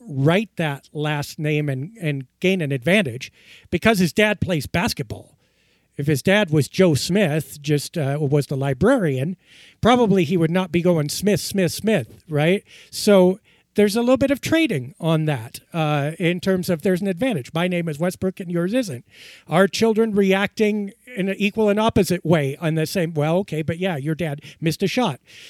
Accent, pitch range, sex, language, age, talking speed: American, 160-205 Hz, male, English, 50-69, 185 wpm